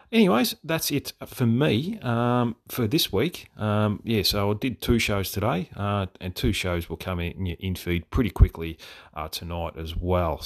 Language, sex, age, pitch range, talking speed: English, male, 30-49, 90-115 Hz, 185 wpm